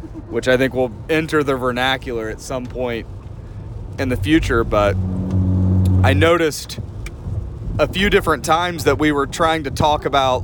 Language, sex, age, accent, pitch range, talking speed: English, male, 30-49, American, 110-150 Hz, 155 wpm